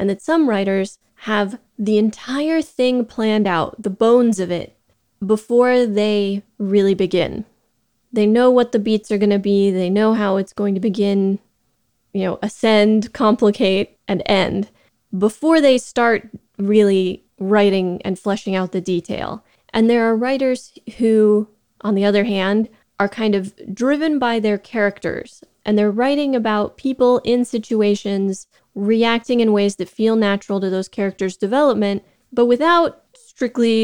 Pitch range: 200-235 Hz